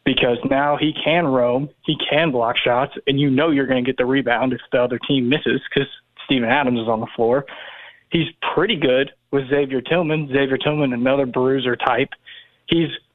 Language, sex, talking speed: English, male, 190 wpm